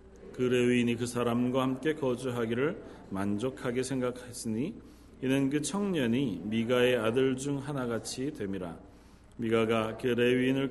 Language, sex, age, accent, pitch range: Korean, male, 40-59, native, 105-135 Hz